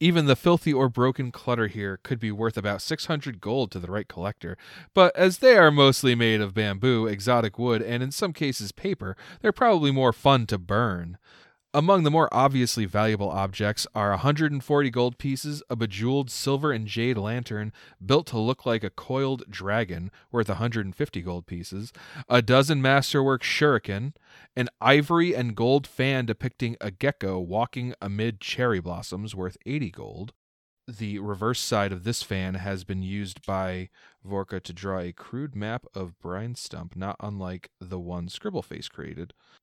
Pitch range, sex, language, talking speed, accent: 100-135 Hz, male, English, 165 wpm, American